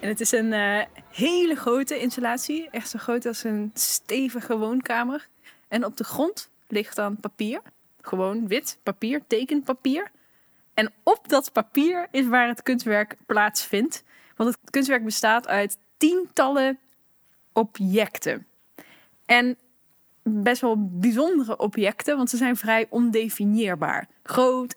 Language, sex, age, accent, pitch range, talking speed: Dutch, female, 20-39, Dutch, 215-260 Hz, 130 wpm